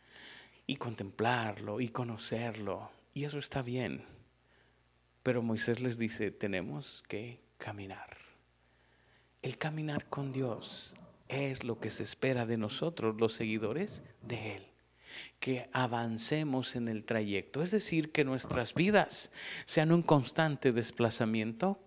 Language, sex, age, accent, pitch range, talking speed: Spanish, male, 50-69, Mexican, 115-175 Hz, 120 wpm